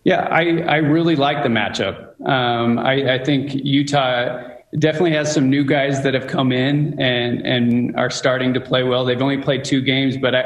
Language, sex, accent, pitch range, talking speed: English, male, American, 120-135 Hz, 195 wpm